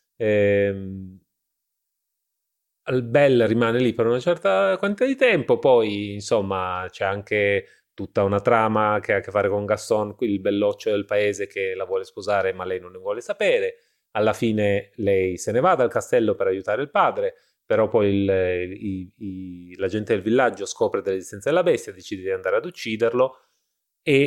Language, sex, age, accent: Italian, male, 30-49, native